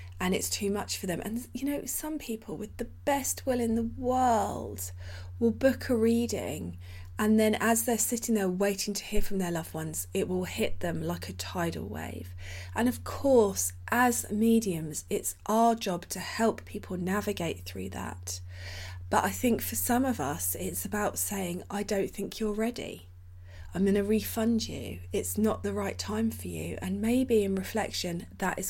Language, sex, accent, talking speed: English, female, British, 190 wpm